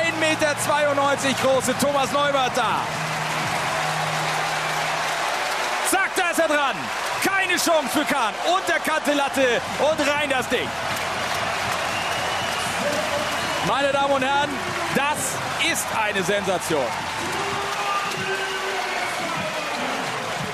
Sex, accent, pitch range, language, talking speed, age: male, German, 205-300 Hz, German, 80 wpm, 40-59